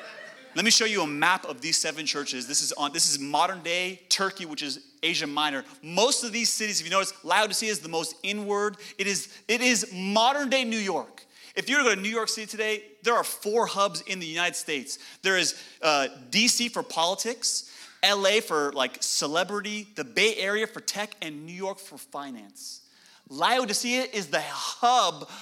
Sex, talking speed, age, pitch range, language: male, 190 wpm, 30-49, 175-235 Hz, English